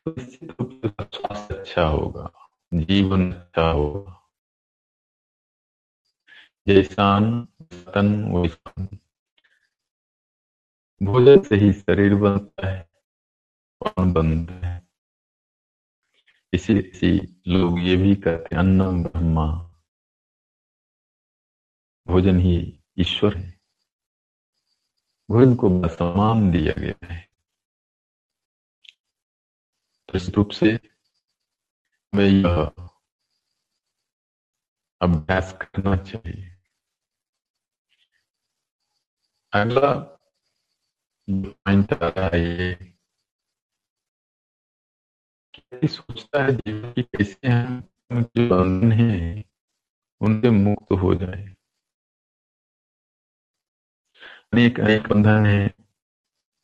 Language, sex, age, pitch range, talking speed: Hindi, male, 50-69, 85-105 Hz, 55 wpm